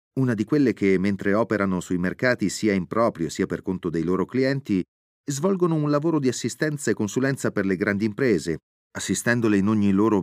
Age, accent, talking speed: 30-49, native, 190 wpm